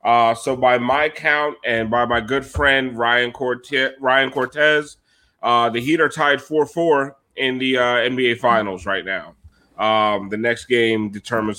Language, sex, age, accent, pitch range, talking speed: English, male, 30-49, American, 115-140 Hz, 160 wpm